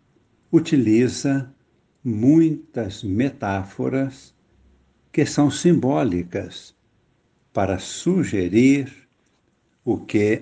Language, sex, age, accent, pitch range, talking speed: Portuguese, male, 60-79, Brazilian, 100-135 Hz, 60 wpm